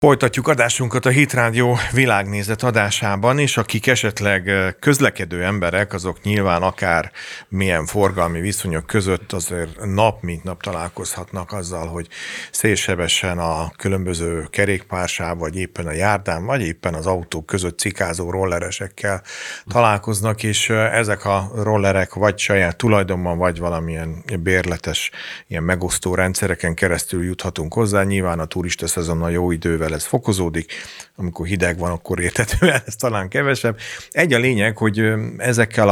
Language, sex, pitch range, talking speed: Hungarian, male, 85-105 Hz, 130 wpm